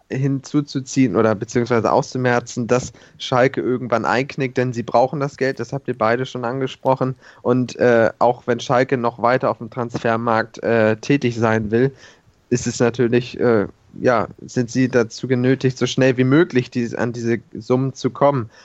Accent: German